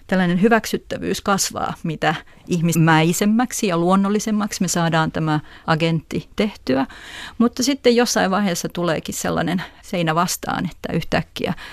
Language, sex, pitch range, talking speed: Finnish, female, 160-205 Hz, 115 wpm